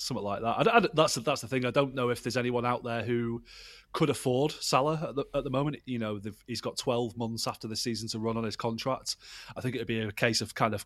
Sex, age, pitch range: male, 30-49, 105-125 Hz